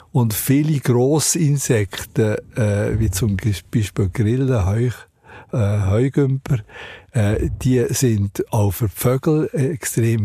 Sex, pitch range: male, 105-130 Hz